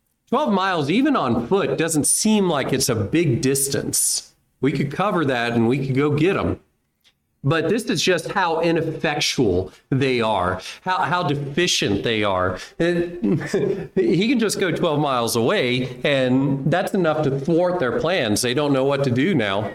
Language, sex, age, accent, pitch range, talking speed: English, male, 40-59, American, 125-190 Hz, 175 wpm